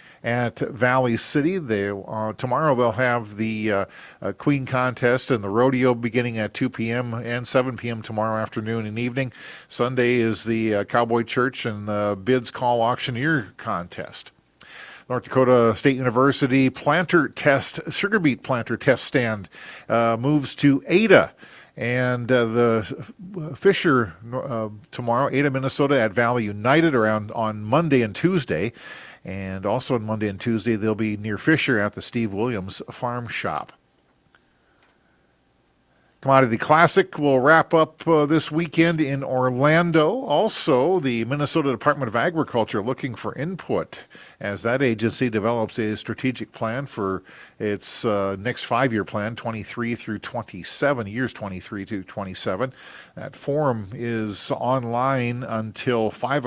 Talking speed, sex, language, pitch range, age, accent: 140 wpm, male, English, 110-135 Hz, 50-69, American